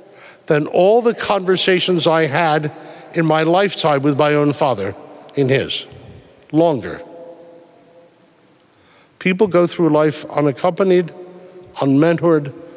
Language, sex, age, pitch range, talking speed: English, male, 60-79, 145-185 Hz, 105 wpm